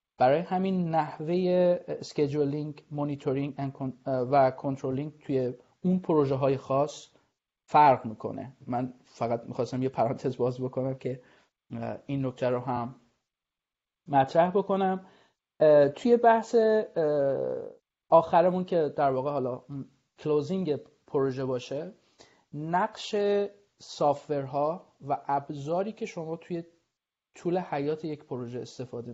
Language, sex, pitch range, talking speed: Persian, male, 130-165 Hz, 105 wpm